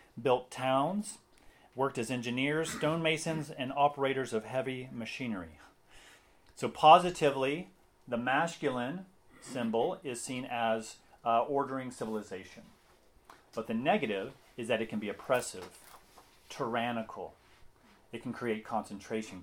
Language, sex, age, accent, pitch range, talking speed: English, male, 30-49, American, 110-145 Hz, 110 wpm